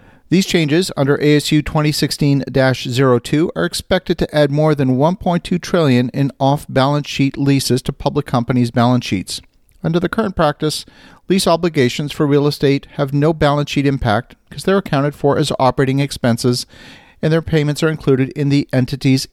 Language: English